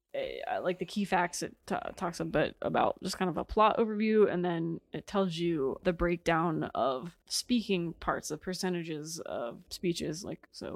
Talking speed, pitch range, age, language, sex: 175 wpm, 175-210 Hz, 20-39, English, female